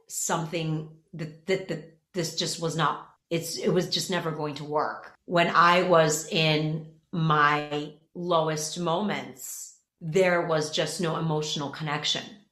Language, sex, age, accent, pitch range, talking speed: English, female, 30-49, American, 150-170 Hz, 140 wpm